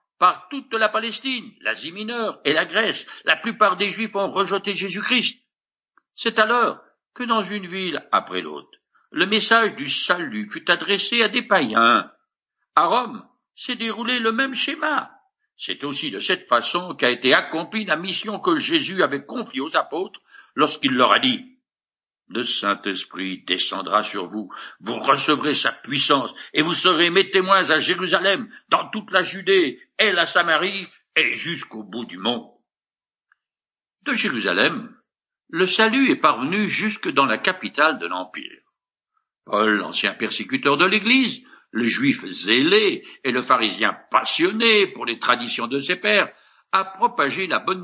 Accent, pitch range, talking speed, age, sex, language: French, 185-255 Hz, 155 wpm, 60-79, male, French